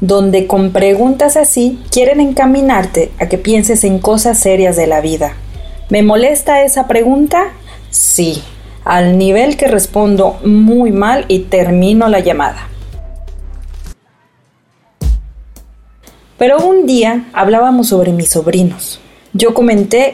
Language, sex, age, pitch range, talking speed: Spanish, female, 30-49, 180-245 Hz, 115 wpm